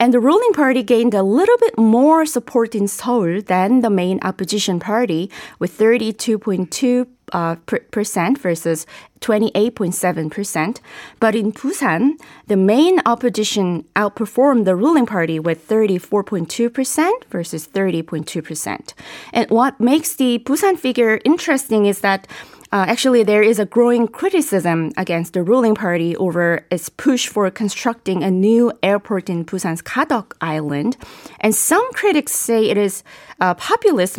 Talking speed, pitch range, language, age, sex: 135 wpm, 180-245 Hz, English, 20-39, female